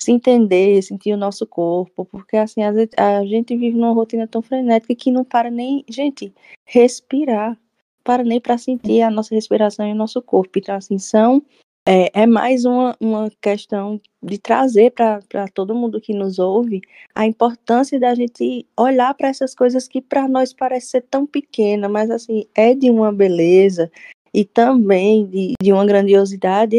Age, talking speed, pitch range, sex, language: 20-39, 170 wpm, 200-240 Hz, female, Portuguese